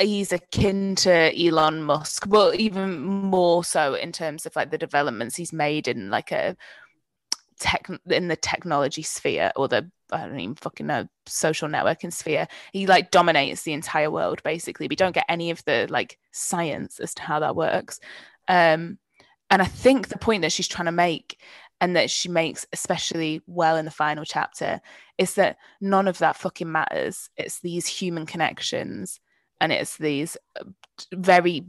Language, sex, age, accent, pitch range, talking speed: English, female, 20-39, British, 155-185 Hz, 170 wpm